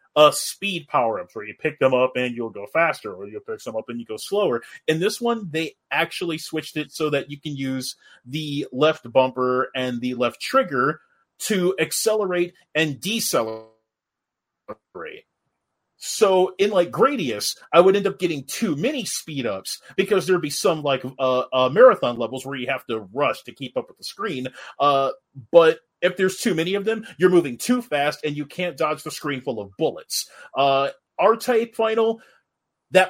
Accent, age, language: American, 30-49, English